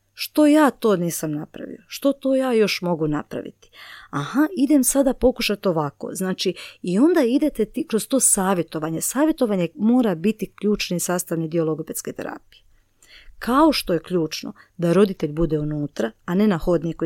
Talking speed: 155 wpm